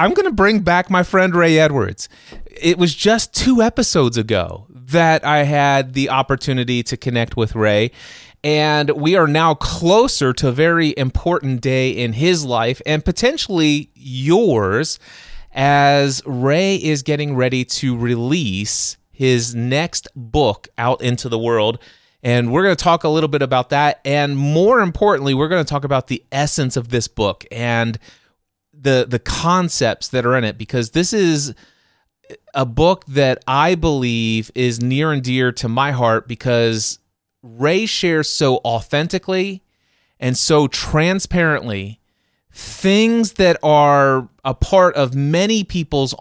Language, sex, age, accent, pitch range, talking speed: English, male, 30-49, American, 120-160 Hz, 150 wpm